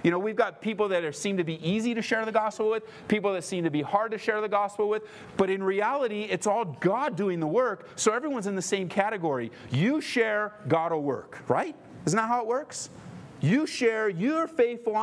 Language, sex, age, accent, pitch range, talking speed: English, male, 40-59, American, 135-215 Hz, 230 wpm